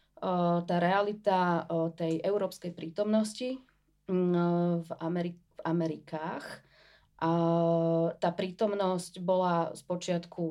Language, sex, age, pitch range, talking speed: Slovak, female, 30-49, 165-200 Hz, 80 wpm